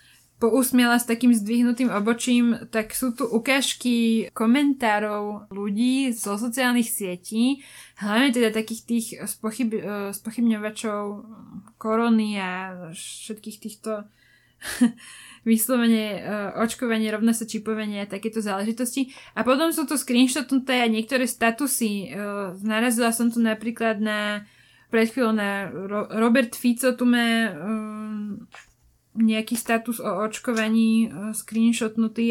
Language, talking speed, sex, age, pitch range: Slovak, 100 wpm, female, 20-39, 210-240 Hz